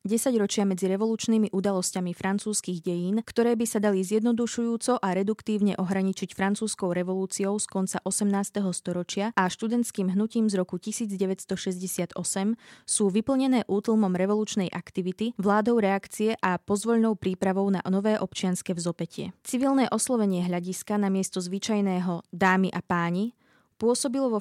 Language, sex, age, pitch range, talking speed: Slovak, female, 20-39, 185-220 Hz, 130 wpm